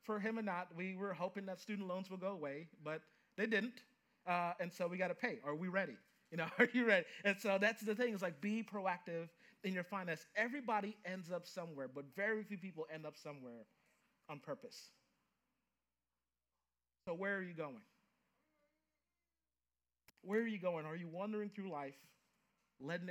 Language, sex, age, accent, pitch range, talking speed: English, male, 40-59, American, 150-200 Hz, 185 wpm